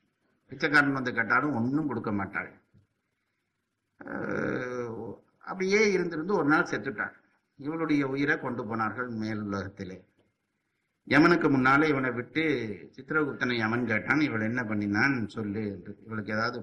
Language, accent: Tamil, native